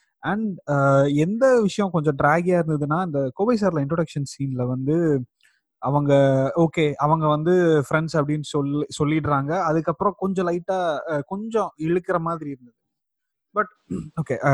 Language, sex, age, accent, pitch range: Tamil, male, 30-49, native, 140-175 Hz